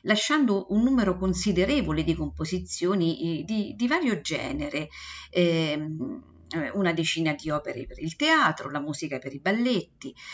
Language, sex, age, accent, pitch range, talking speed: Italian, female, 50-69, native, 155-230 Hz, 135 wpm